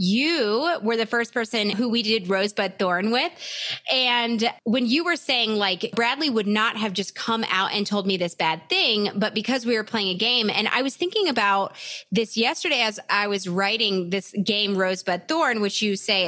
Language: English